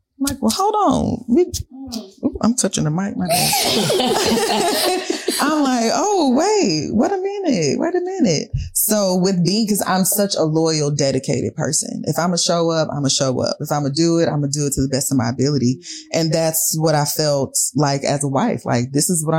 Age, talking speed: 20-39, 230 wpm